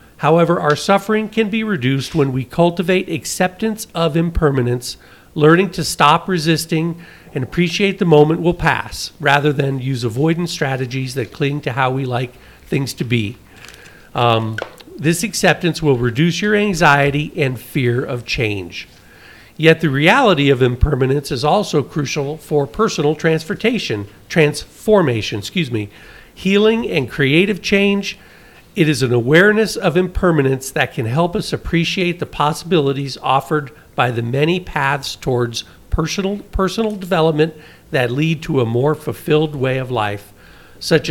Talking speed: 140 wpm